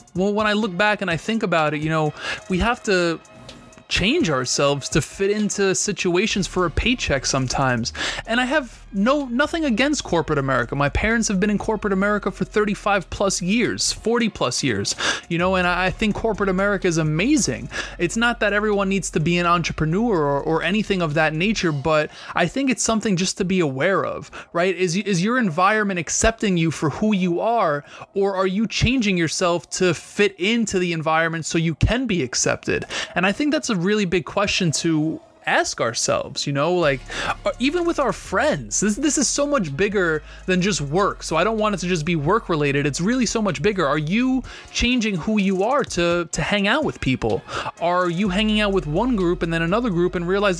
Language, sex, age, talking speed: English, male, 20-39, 205 wpm